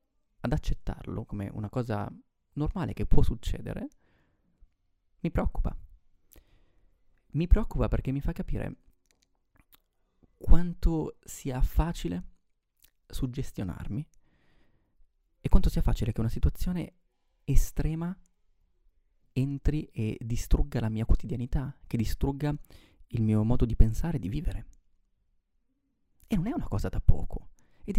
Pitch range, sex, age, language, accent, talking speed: 95-130 Hz, male, 30-49, Italian, native, 115 wpm